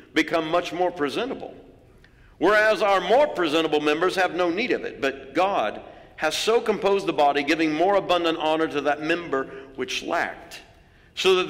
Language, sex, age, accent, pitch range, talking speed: English, male, 60-79, American, 145-215 Hz, 165 wpm